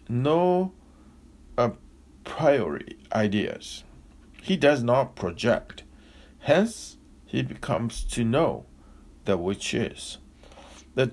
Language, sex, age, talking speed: English, male, 60-79, 90 wpm